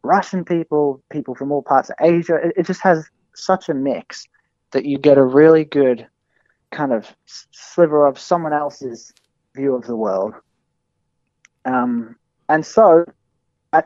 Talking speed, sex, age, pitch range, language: 150 wpm, male, 30-49, 135-170 Hz, English